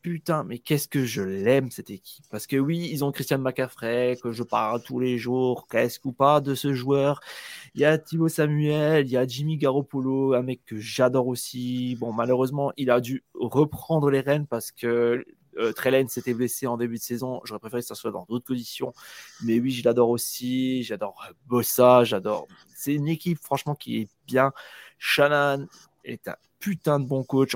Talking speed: 195 wpm